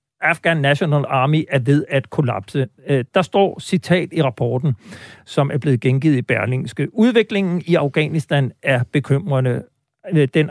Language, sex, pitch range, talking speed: Danish, male, 140-180 Hz, 135 wpm